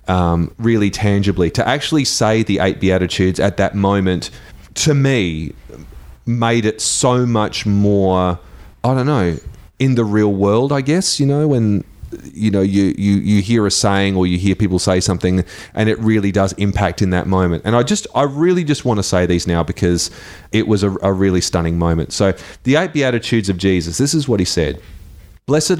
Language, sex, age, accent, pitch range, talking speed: English, male, 30-49, Australian, 85-105 Hz, 195 wpm